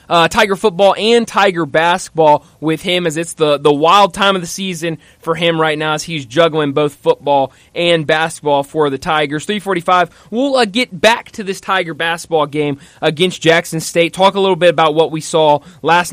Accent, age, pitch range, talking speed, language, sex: American, 20-39, 150-185 Hz, 195 wpm, English, male